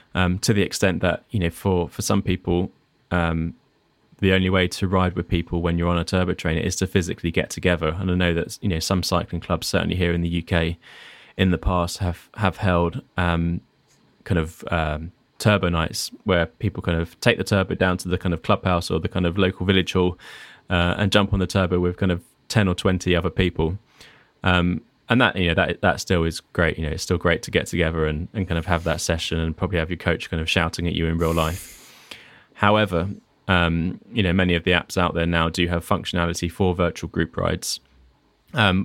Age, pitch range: 20-39, 85-95 Hz